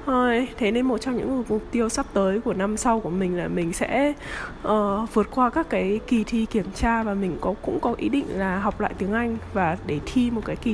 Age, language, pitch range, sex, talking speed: 20-39, Vietnamese, 200-265 Hz, female, 245 wpm